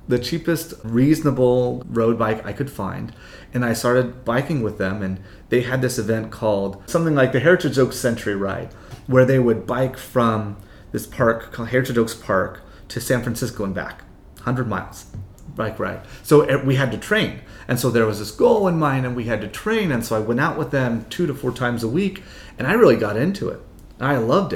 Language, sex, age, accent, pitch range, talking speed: English, male, 30-49, American, 105-130 Hz, 210 wpm